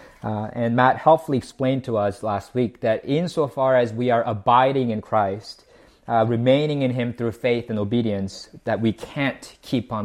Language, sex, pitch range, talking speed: English, male, 120-150 Hz, 180 wpm